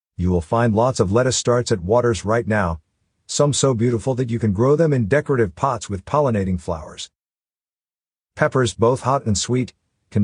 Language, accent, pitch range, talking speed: English, American, 90-115 Hz, 180 wpm